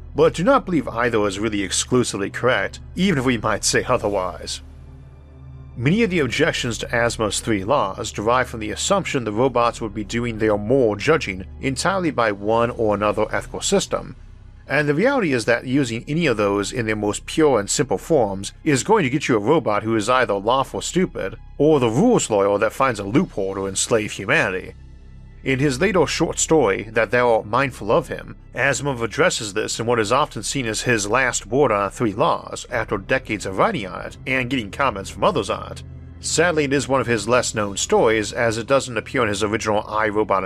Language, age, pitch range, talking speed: English, 50-69, 100-130 Hz, 205 wpm